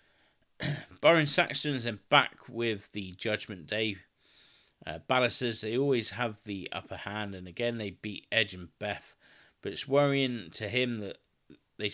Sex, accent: male, British